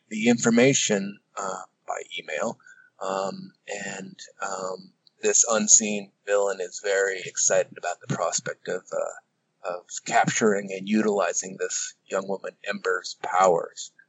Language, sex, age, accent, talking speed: English, male, 30-49, American, 120 wpm